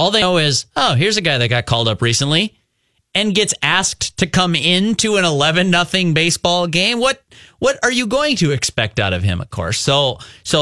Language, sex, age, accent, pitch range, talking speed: English, male, 30-49, American, 120-170 Hz, 210 wpm